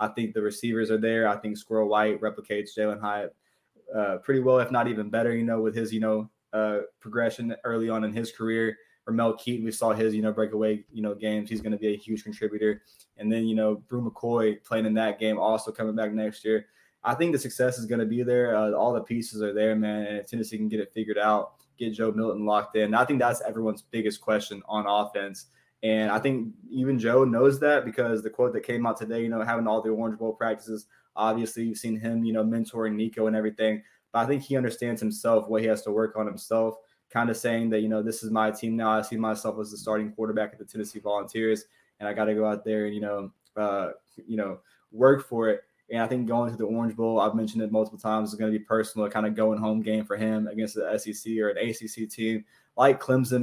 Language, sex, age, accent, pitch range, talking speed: English, male, 20-39, American, 110-115 Hz, 250 wpm